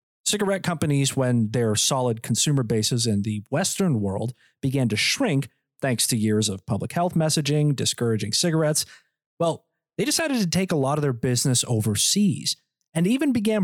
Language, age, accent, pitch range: English, 30-49, American, 120-175 Hz